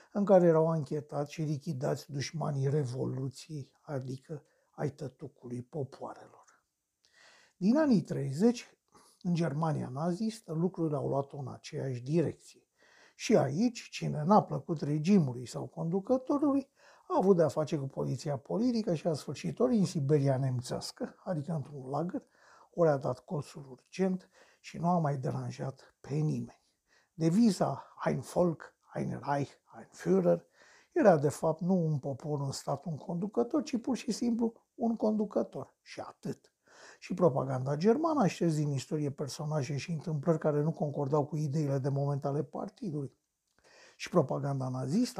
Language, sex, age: Romanian, male, 60-79